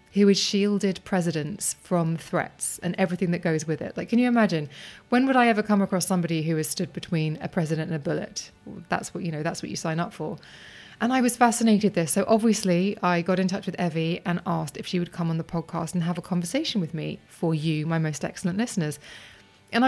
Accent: British